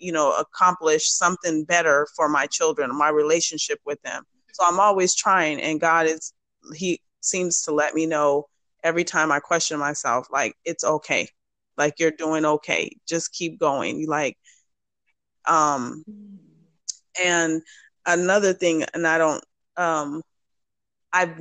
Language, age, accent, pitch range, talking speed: English, 20-39, American, 155-180 Hz, 140 wpm